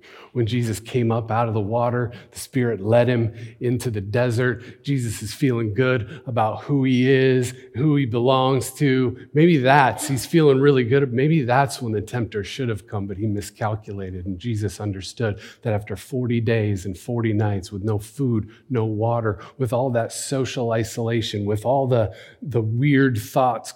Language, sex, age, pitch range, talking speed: English, male, 40-59, 105-125 Hz, 175 wpm